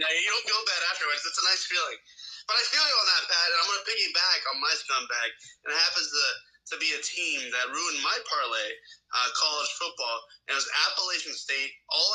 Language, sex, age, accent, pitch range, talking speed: English, male, 20-39, American, 175-275 Hz, 225 wpm